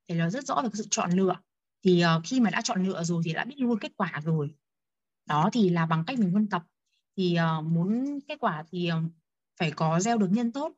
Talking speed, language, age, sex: 240 wpm, Vietnamese, 20-39, female